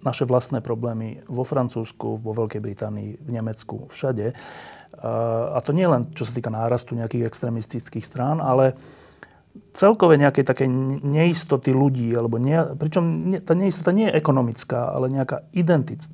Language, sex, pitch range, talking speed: Slovak, male, 120-150 Hz, 150 wpm